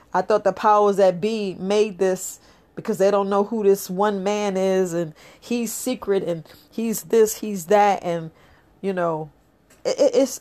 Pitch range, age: 180-215 Hz, 40-59